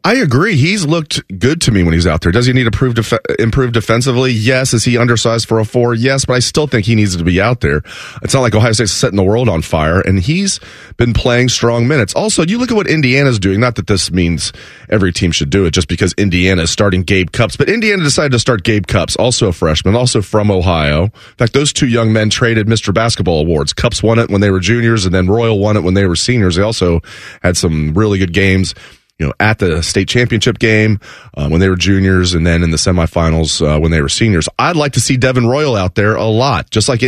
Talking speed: 250 wpm